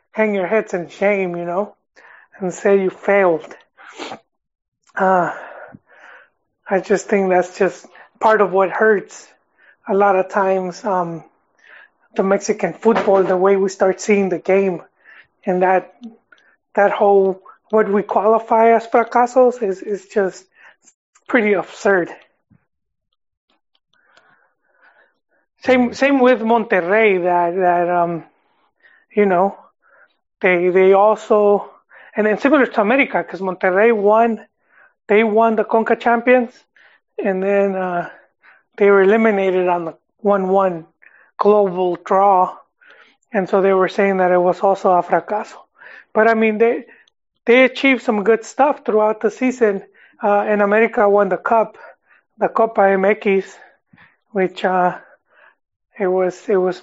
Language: English